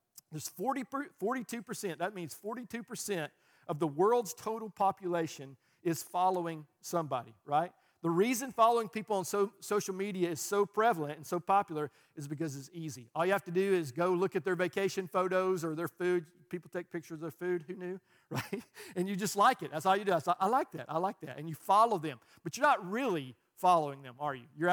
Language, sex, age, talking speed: English, male, 50-69, 215 wpm